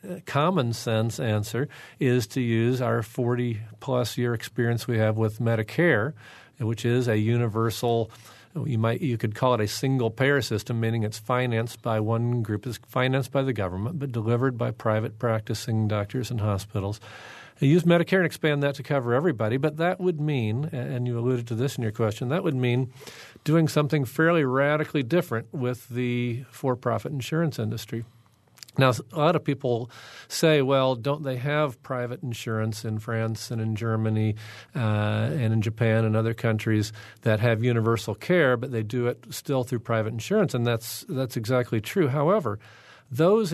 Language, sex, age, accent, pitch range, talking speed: English, male, 50-69, American, 115-140 Hz, 165 wpm